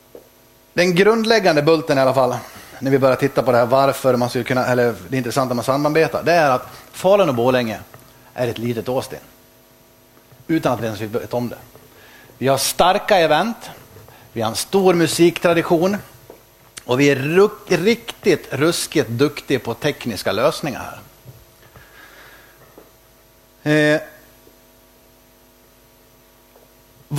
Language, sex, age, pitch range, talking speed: English, male, 30-49, 125-155 Hz, 130 wpm